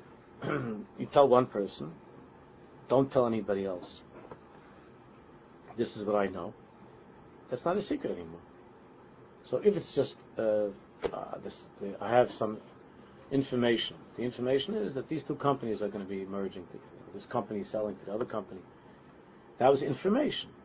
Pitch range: 105-135 Hz